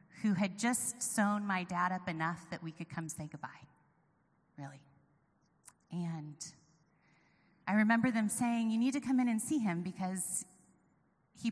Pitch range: 170-215 Hz